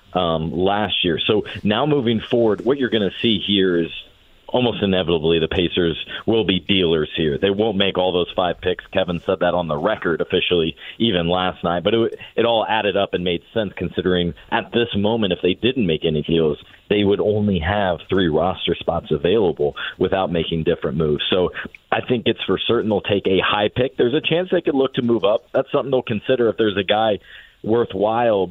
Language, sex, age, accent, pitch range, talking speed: English, male, 40-59, American, 90-110 Hz, 210 wpm